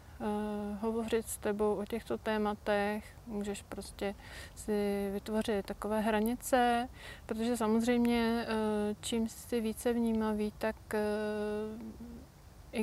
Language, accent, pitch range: Czech, native, 205-235 Hz